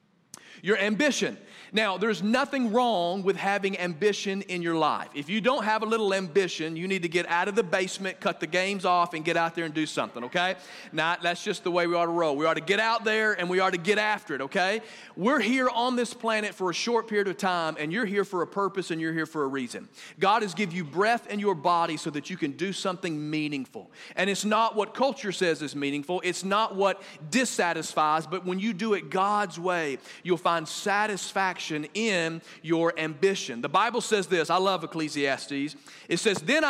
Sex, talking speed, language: male, 220 wpm, English